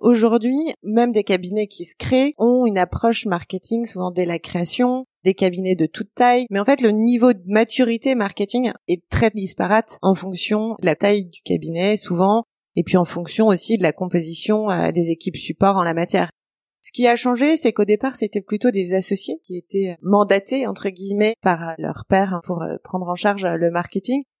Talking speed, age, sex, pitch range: 190 wpm, 30-49, female, 175-215 Hz